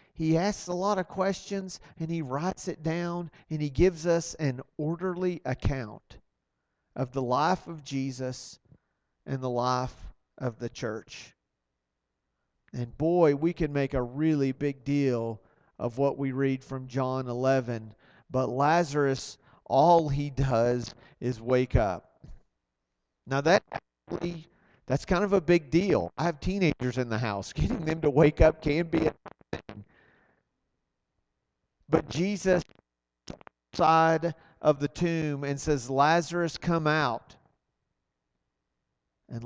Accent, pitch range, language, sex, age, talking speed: American, 120-160 Hz, English, male, 40-59, 135 wpm